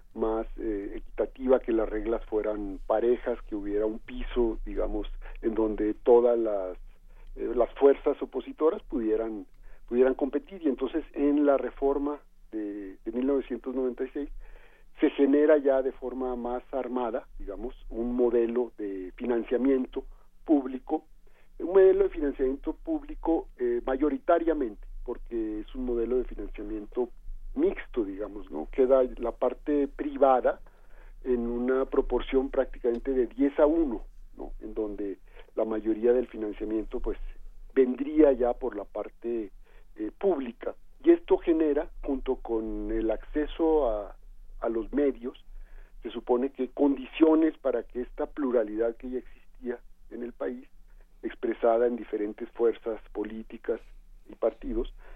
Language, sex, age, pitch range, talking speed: Spanish, male, 50-69, 115-145 Hz, 130 wpm